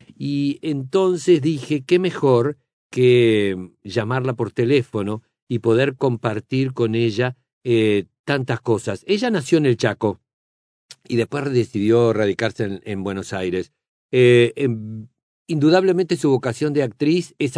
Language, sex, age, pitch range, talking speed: Spanish, male, 50-69, 115-150 Hz, 130 wpm